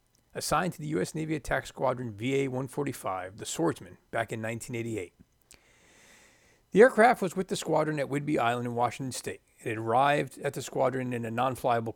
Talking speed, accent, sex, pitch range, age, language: 170 wpm, American, male, 115-155 Hz, 40-59, English